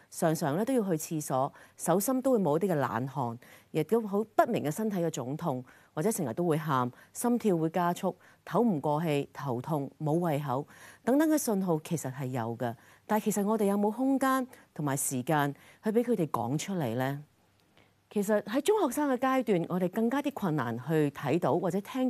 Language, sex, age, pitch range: Chinese, female, 40-59, 140-220 Hz